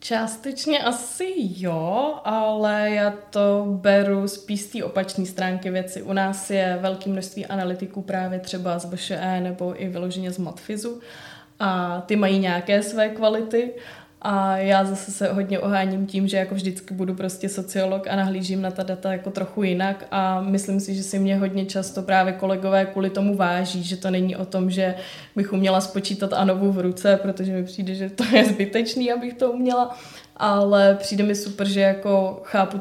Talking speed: 175 wpm